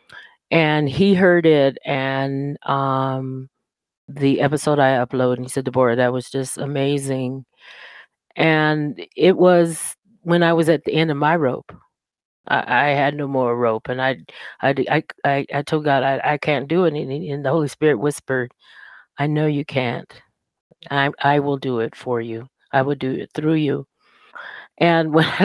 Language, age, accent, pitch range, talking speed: English, 40-59, American, 130-155 Hz, 175 wpm